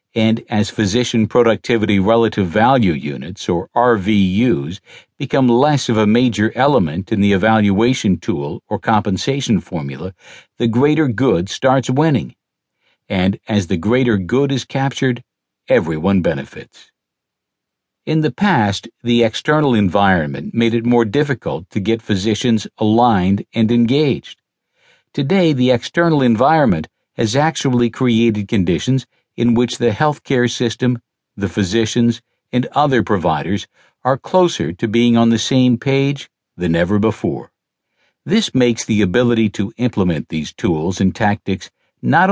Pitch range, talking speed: 105-130 Hz, 130 wpm